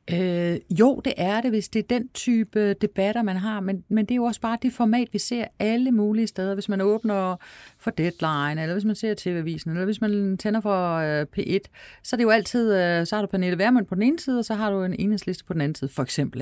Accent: native